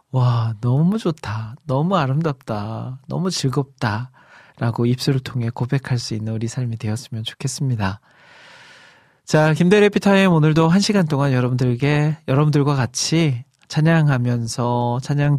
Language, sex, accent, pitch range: Korean, male, native, 120-150 Hz